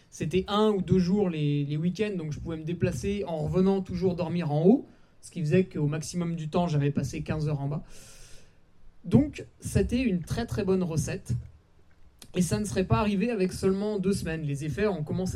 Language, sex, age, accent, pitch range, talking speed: French, male, 20-39, French, 150-195 Hz, 205 wpm